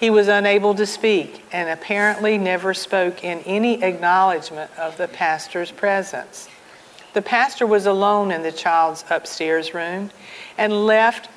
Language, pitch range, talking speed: English, 180-230 Hz, 145 wpm